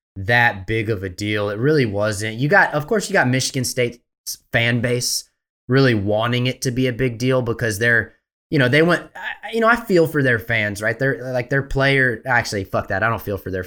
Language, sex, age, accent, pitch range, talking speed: English, male, 20-39, American, 110-140 Hz, 230 wpm